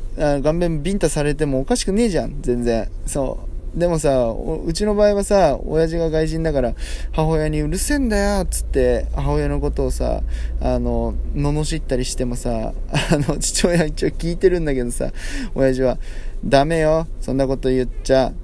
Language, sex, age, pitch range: Japanese, male, 20-39, 130-175 Hz